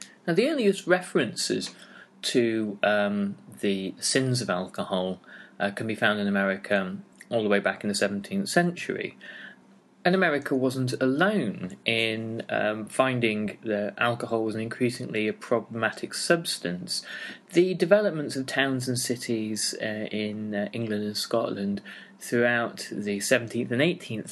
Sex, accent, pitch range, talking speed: male, British, 105-130 Hz, 135 wpm